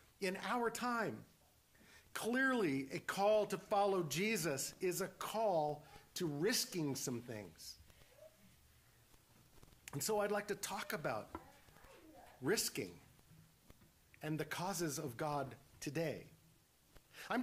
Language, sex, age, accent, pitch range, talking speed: English, male, 50-69, American, 135-200 Hz, 105 wpm